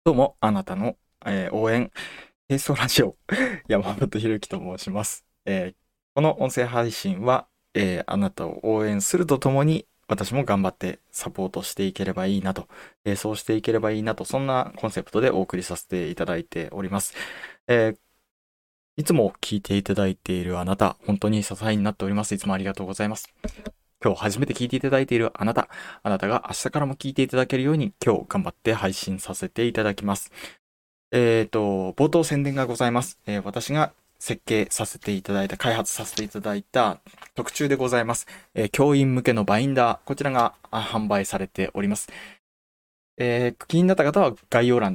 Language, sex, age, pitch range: Japanese, male, 20-39, 100-130 Hz